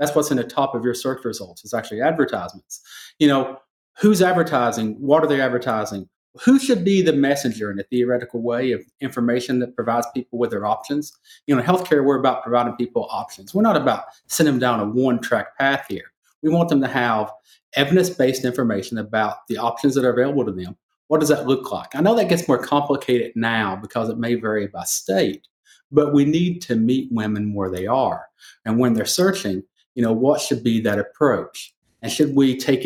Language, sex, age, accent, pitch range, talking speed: English, male, 40-59, American, 115-145 Hz, 210 wpm